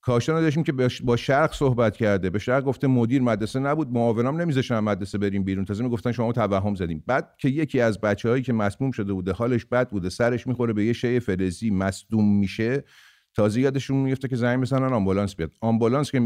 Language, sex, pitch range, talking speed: English, male, 100-130 Hz, 200 wpm